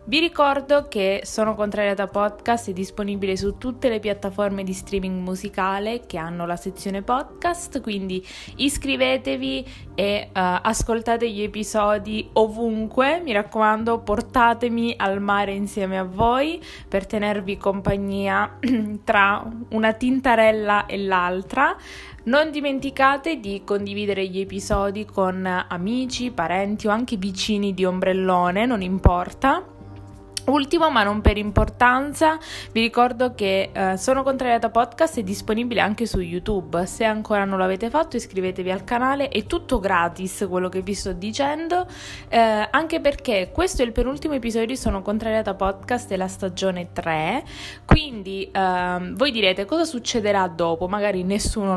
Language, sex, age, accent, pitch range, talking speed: Italian, female, 20-39, native, 195-250 Hz, 135 wpm